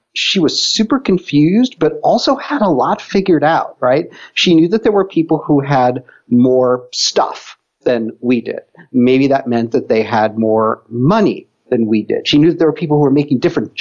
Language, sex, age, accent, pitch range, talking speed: English, male, 50-69, American, 115-155 Hz, 200 wpm